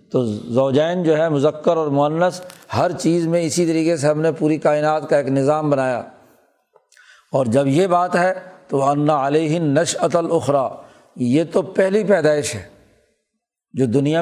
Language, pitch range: Urdu, 140-175 Hz